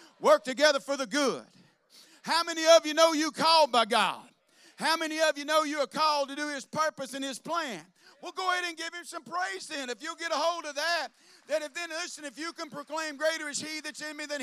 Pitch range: 265-320 Hz